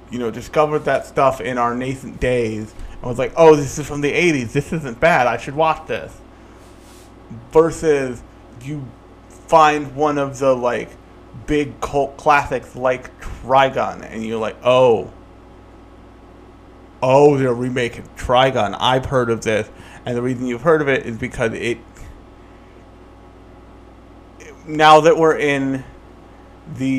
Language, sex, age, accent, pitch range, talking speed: English, male, 30-49, American, 90-140 Hz, 140 wpm